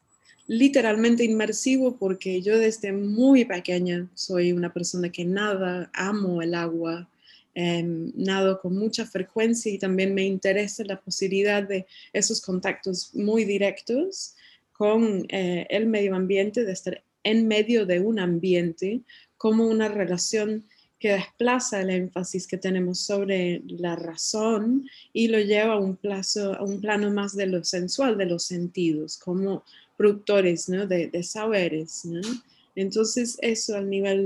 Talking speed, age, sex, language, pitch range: 145 wpm, 20-39, female, Spanish, 180-220 Hz